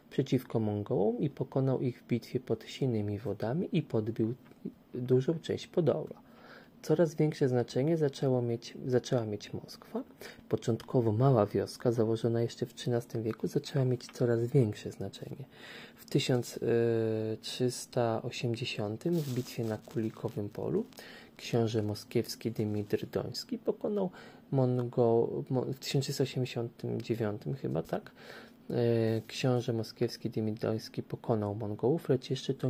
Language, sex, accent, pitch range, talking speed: Polish, male, native, 115-130 Hz, 110 wpm